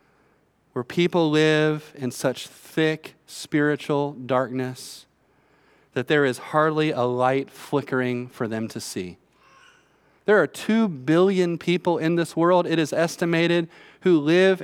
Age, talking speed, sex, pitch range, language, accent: 30-49, 130 wpm, male, 135-170 Hz, English, American